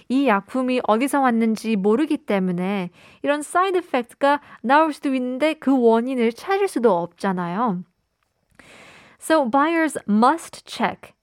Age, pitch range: 20-39, 195-265 Hz